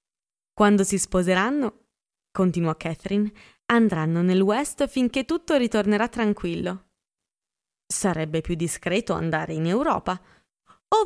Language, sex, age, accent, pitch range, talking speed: Italian, female, 20-39, native, 185-255 Hz, 105 wpm